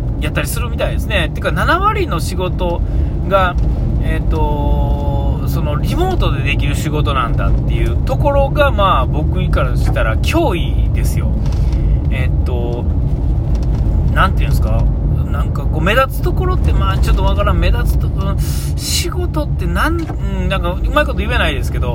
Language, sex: Japanese, male